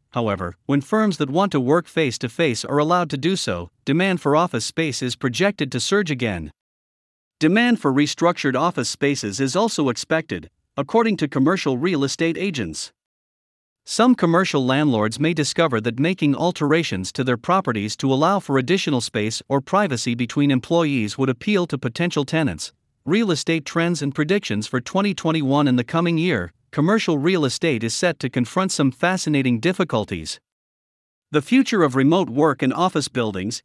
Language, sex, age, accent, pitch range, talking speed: English, male, 50-69, American, 125-175 Hz, 160 wpm